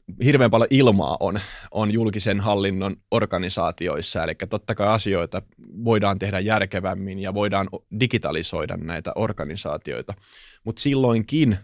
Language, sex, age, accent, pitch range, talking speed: Finnish, male, 20-39, native, 100-120 Hz, 115 wpm